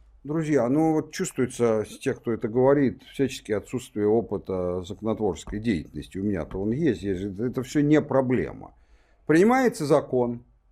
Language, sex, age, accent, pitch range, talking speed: Russian, male, 50-69, native, 105-145 Hz, 140 wpm